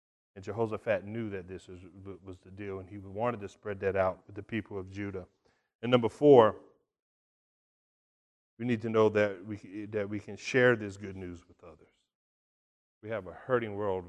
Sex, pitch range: male, 95-115 Hz